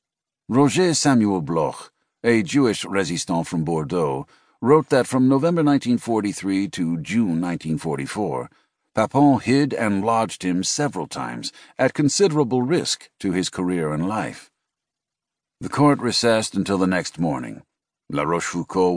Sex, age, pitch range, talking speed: male, 60-79, 85-120 Hz, 125 wpm